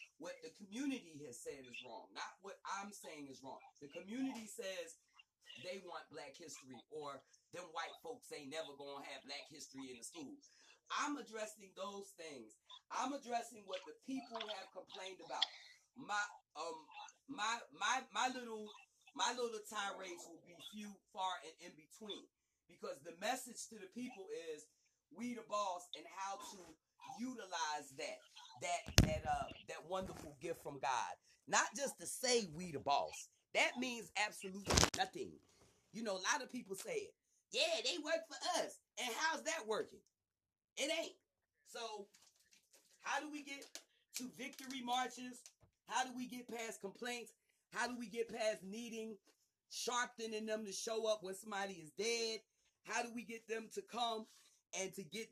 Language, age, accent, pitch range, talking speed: English, 30-49, American, 195-255 Hz, 165 wpm